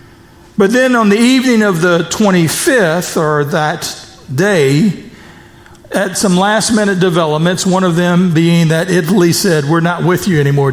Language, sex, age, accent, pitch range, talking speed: English, male, 50-69, American, 155-200 Hz, 150 wpm